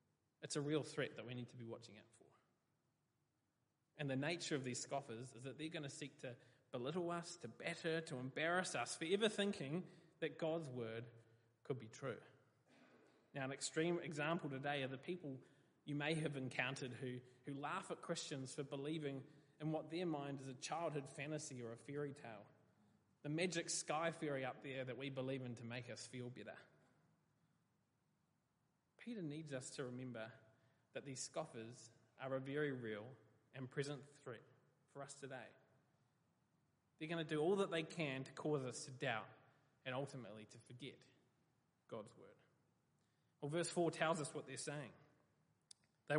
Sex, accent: male, Australian